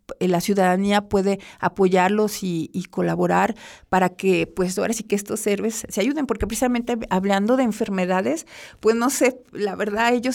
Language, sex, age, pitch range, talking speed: Spanish, female, 50-69, 185-225 Hz, 160 wpm